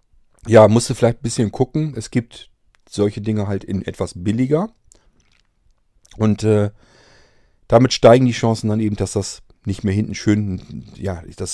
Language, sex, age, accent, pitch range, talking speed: German, male, 40-59, German, 90-110 Hz, 160 wpm